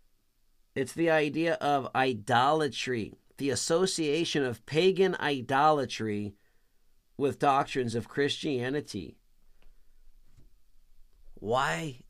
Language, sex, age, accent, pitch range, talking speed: English, male, 50-69, American, 110-150 Hz, 75 wpm